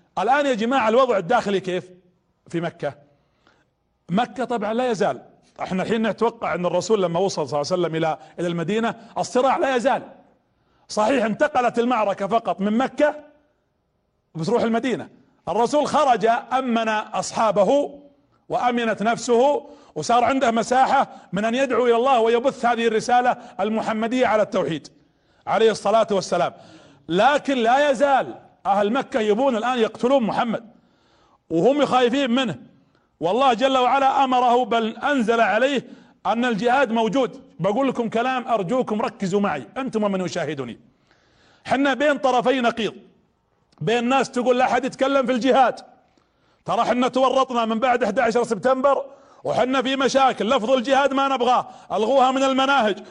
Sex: male